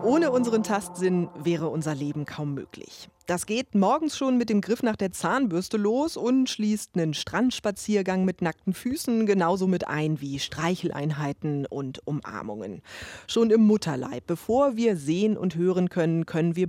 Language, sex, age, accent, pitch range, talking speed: German, female, 30-49, German, 160-225 Hz, 160 wpm